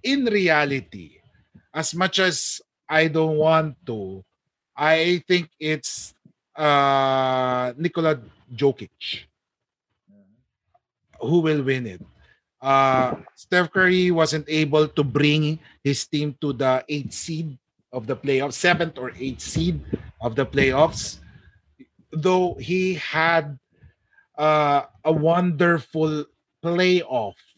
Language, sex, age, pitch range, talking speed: English, male, 30-49, 135-165 Hz, 105 wpm